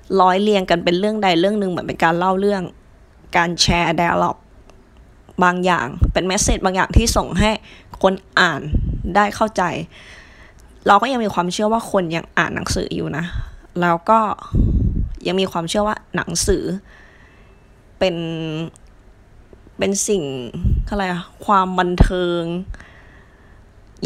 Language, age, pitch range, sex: Thai, 20-39, 155-195 Hz, female